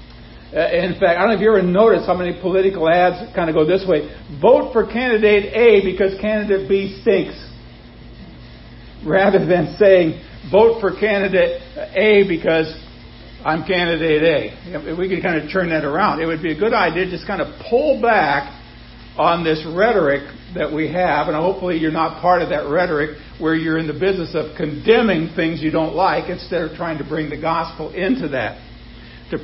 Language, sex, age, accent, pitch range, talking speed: English, male, 60-79, American, 155-190 Hz, 185 wpm